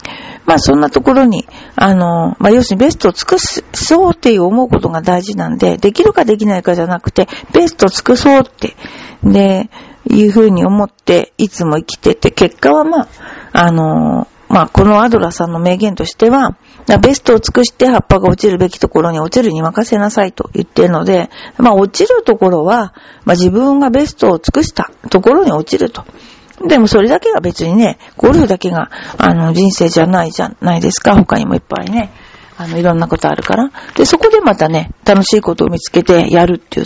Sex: female